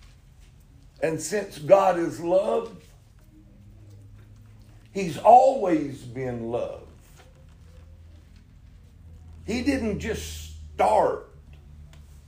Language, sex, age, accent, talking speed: English, male, 60-79, American, 65 wpm